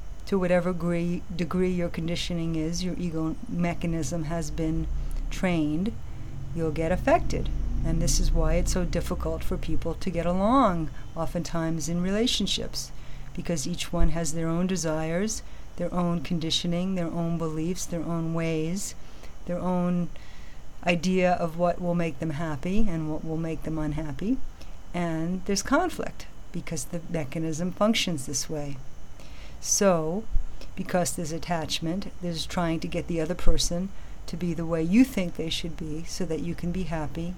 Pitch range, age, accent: 160-180 Hz, 50-69, American